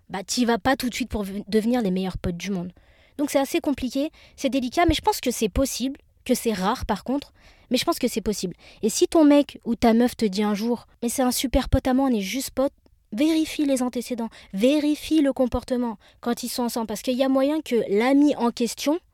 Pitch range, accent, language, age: 210-260 Hz, French, French, 20-39